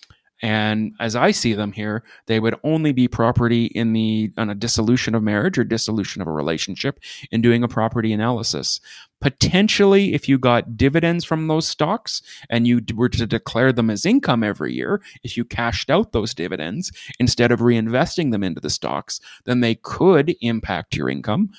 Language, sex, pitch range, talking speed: English, male, 110-145 Hz, 180 wpm